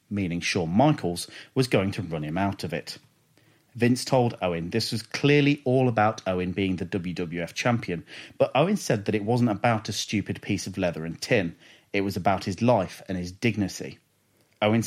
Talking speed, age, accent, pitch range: 190 wpm, 30-49, British, 95-120 Hz